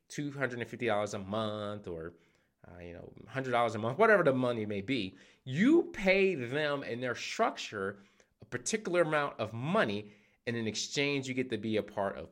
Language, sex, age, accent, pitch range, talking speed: English, male, 20-39, American, 100-135 Hz, 175 wpm